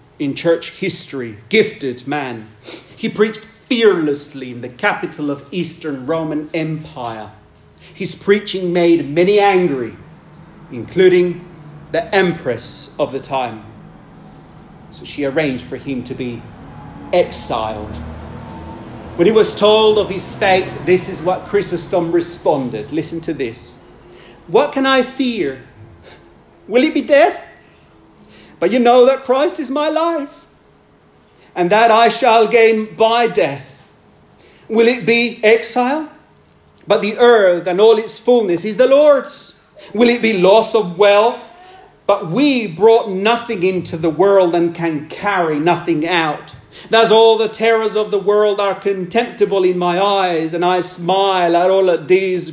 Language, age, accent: English, 40-59, British